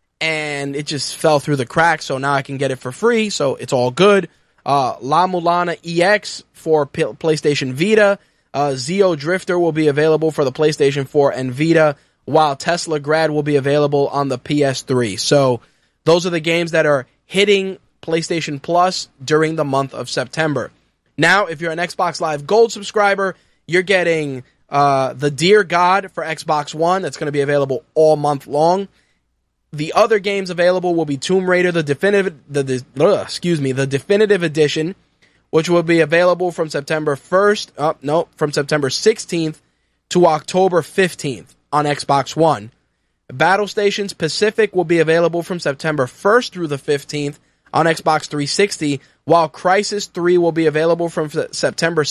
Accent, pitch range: American, 145-180 Hz